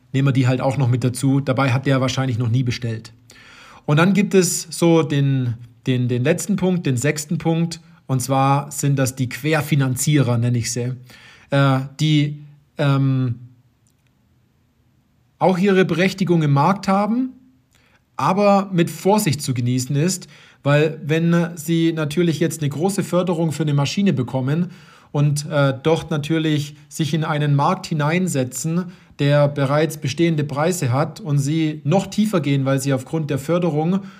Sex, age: male, 40-59